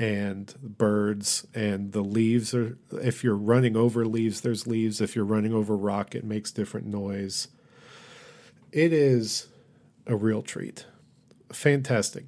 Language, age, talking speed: English, 40-59, 140 wpm